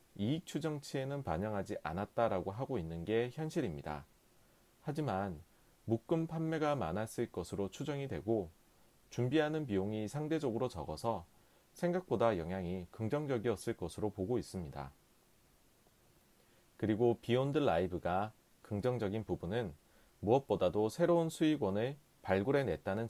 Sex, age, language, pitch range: male, 30-49, Korean, 95-145 Hz